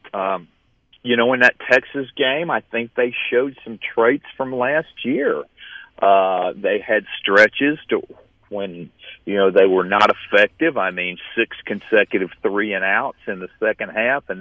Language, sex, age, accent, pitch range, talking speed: English, male, 50-69, American, 100-135 Hz, 165 wpm